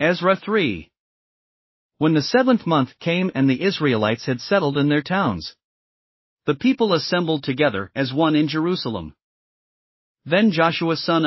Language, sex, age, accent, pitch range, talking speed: English, male, 40-59, American, 130-180 Hz, 140 wpm